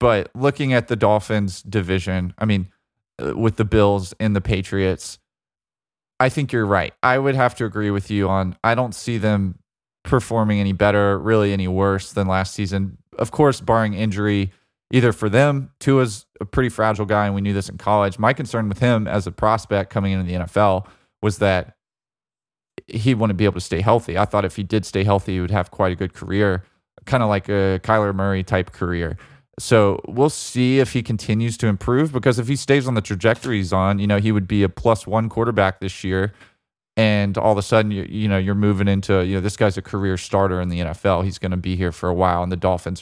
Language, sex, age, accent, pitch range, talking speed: English, male, 20-39, American, 95-110 Hz, 220 wpm